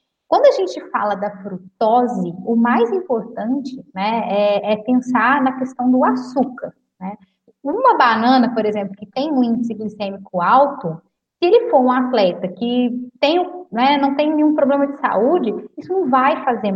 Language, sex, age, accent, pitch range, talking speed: Portuguese, female, 10-29, Brazilian, 210-275 Hz, 165 wpm